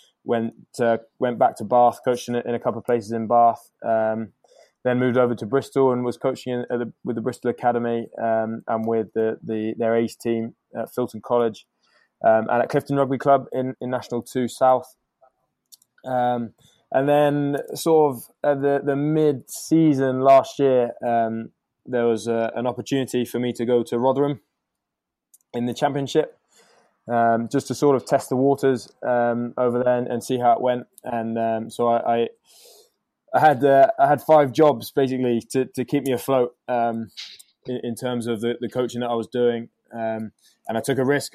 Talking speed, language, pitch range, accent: 190 wpm, English, 120-135 Hz, British